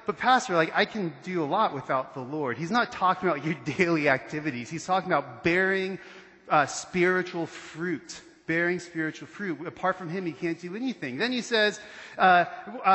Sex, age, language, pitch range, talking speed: male, 30-49, English, 165-210 Hz, 180 wpm